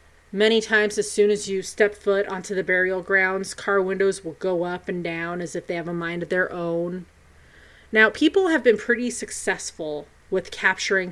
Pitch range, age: 180-220 Hz, 30-49